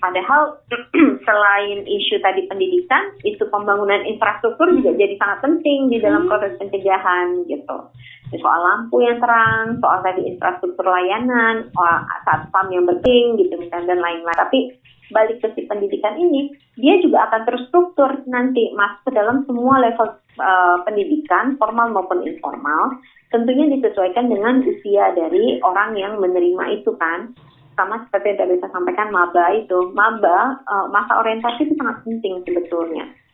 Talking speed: 140 wpm